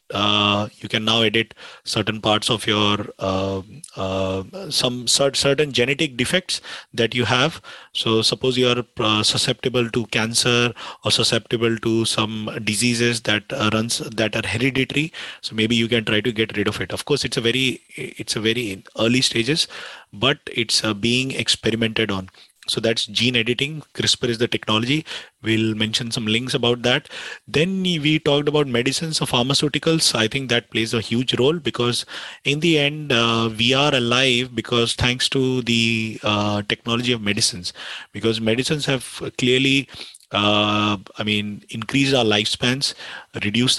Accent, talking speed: Indian, 160 wpm